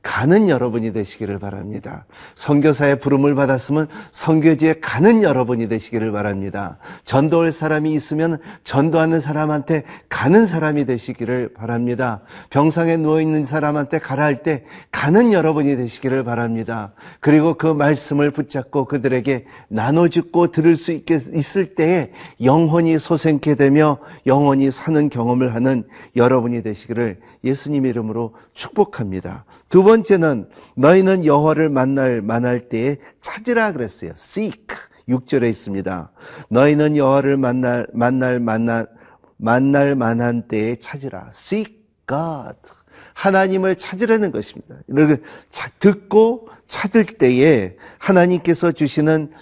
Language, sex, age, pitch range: Korean, male, 40-59, 125-160 Hz